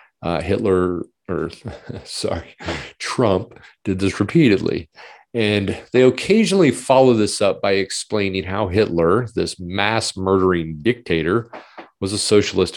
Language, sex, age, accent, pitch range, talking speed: English, male, 40-59, American, 95-110 Hz, 120 wpm